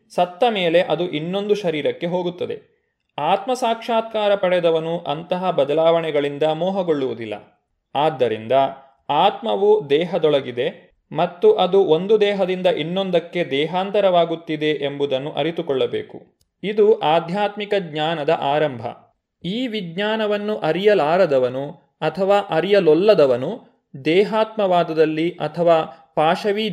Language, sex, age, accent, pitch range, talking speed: Kannada, male, 30-49, native, 155-200 Hz, 80 wpm